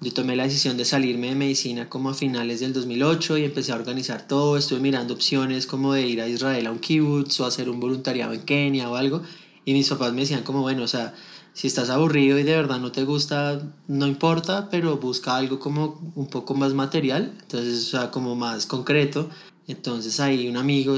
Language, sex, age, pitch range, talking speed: Spanish, male, 20-39, 125-140 Hz, 215 wpm